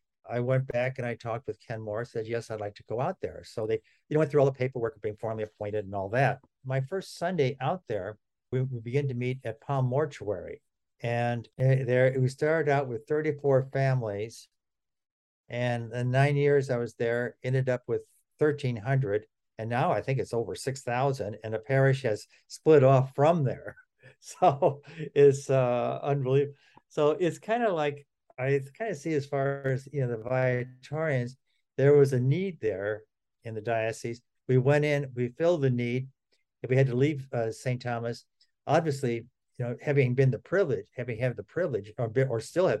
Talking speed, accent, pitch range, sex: 195 wpm, American, 115-140 Hz, male